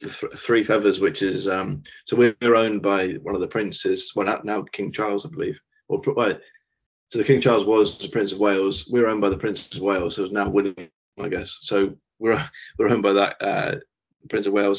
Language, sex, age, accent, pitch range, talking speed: English, male, 20-39, British, 100-115 Hz, 205 wpm